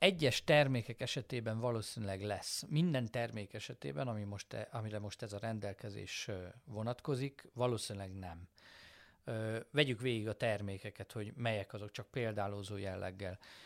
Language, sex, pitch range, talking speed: Hungarian, male, 105-130 Hz, 135 wpm